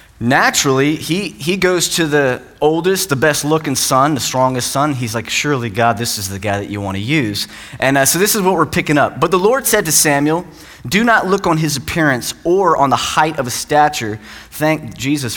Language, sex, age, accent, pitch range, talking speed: English, male, 20-39, American, 125-160 Hz, 225 wpm